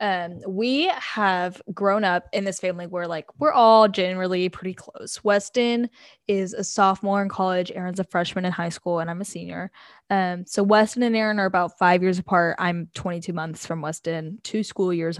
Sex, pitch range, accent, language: female, 180-215 Hz, American, English